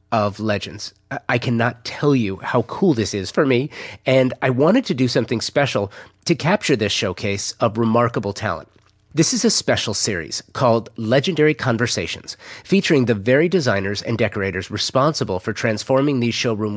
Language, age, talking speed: English, 30-49, 160 wpm